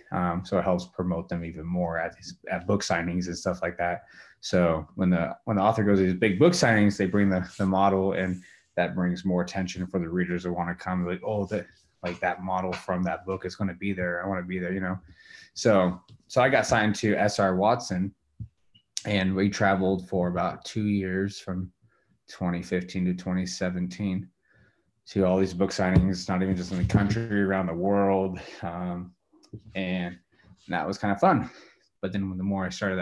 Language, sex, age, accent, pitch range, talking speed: English, male, 20-39, American, 90-105 Hz, 205 wpm